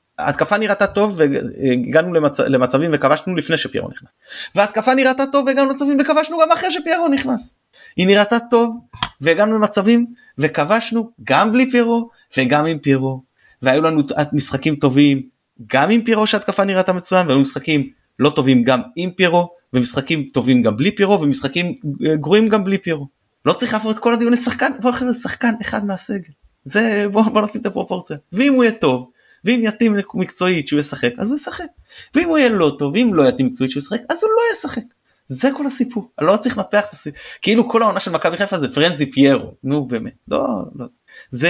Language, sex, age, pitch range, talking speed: Hebrew, male, 30-49, 140-230 Hz, 175 wpm